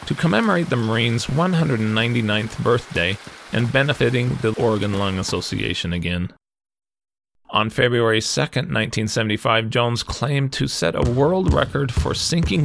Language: English